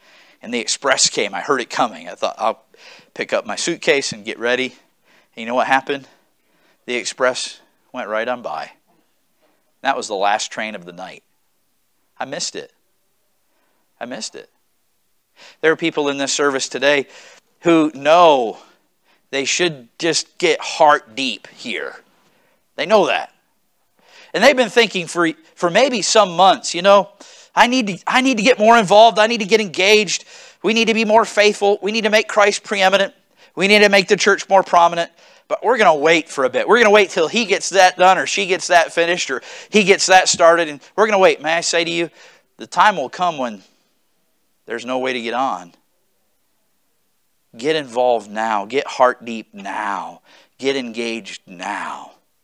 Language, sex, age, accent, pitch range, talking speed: English, male, 50-69, American, 135-210 Hz, 190 wpm